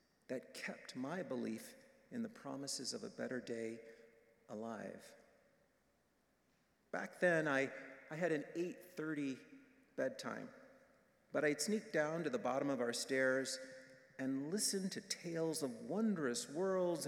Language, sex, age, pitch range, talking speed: English, male, 50-69, 130-205 Hz, 130 wpm